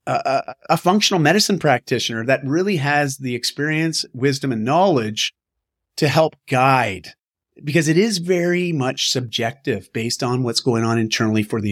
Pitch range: 120-160 Hz